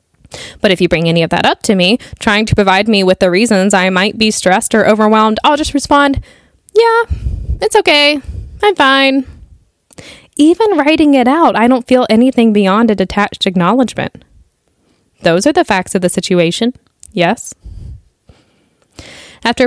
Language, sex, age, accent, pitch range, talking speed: English, female, 10-29, American, 190-280 Hz, 160 wpm